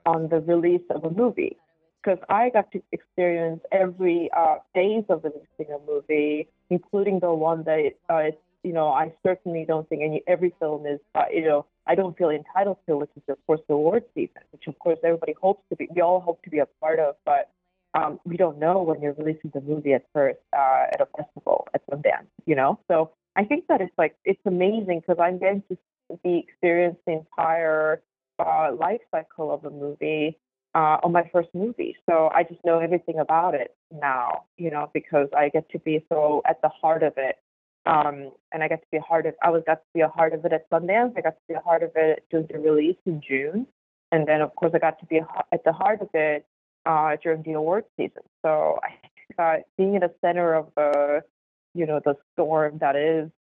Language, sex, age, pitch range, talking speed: English, female, 30-49, 155-180 Hz, 225 wpm